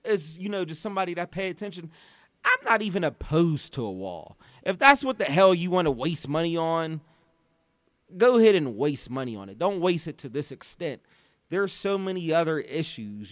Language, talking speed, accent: English, 200 wpm, American